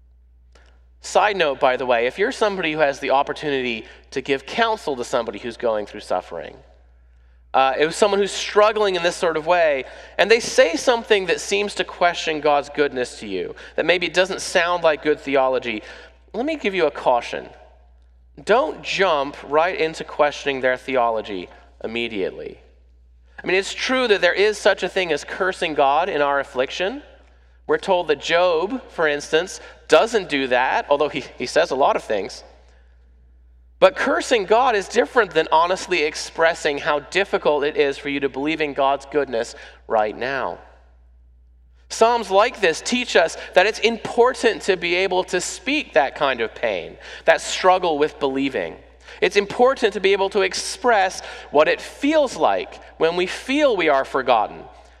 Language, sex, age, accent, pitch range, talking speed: English, male, 30-49, American, 115-195 Hz, 170 wpm